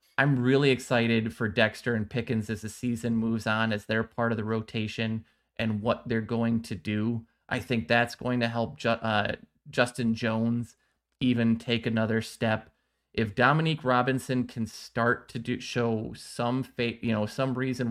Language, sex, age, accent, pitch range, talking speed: English, male, 20-39, American, 110-125 Hz, 170 wpm